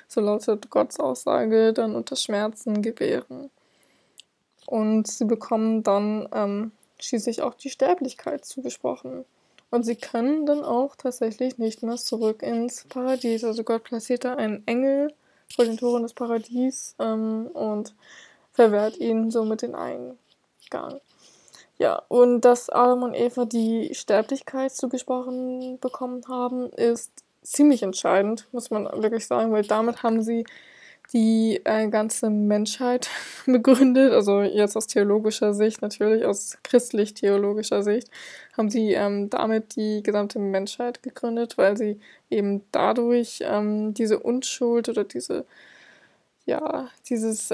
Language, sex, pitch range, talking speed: German, female, 220-250 Hz, 130 wpm